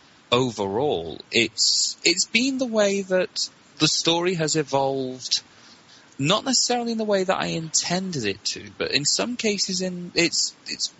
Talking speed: 155 wpm